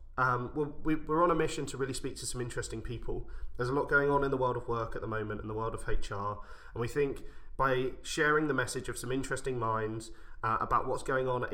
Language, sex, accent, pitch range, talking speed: English, male, British, 115-145 Hz, 245 wpm